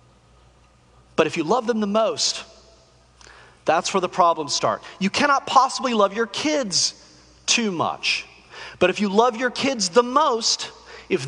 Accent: American